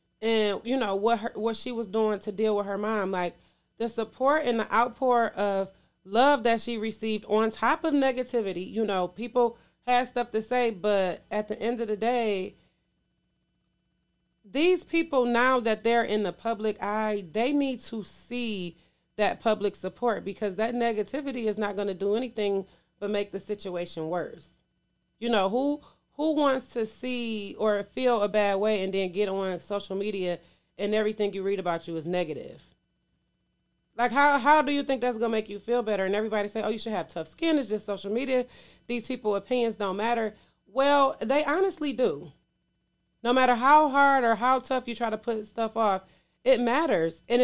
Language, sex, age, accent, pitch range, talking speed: English, female, 30-49, American, 205-255 Hz, 190 wpm